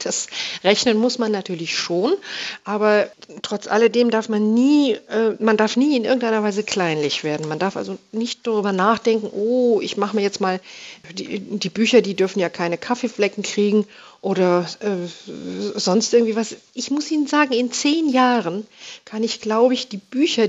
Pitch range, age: 195-245 Hz, 50-69